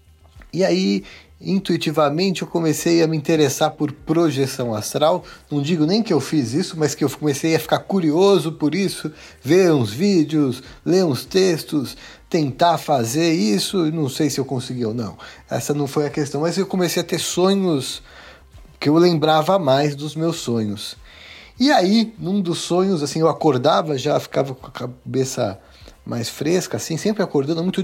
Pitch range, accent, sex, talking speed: 140-195 Hz, Brazilian, male, 170 wpm